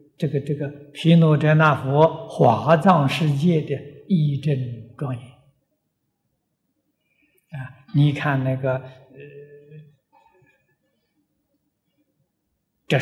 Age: 60-79